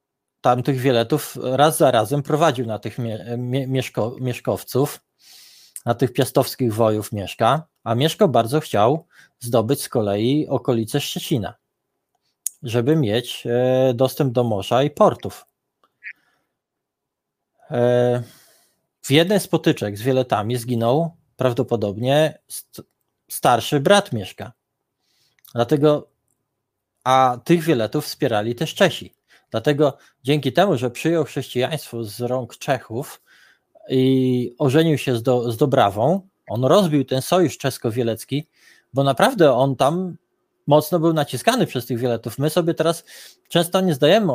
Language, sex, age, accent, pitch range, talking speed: Polish, male, 20-39, native, 125-160 Hz, 115 wpm